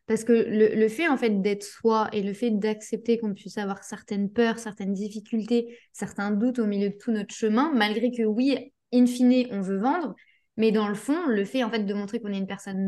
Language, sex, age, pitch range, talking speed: French, female, 20-39, 210-245 Hz, 235 wpm